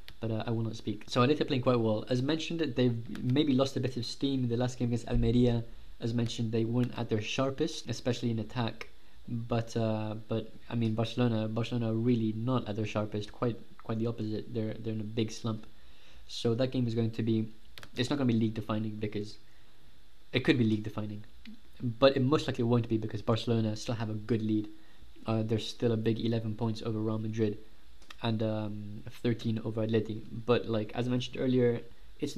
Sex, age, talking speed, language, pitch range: male, 20-39, 215 wpm, English, 110-125 Hz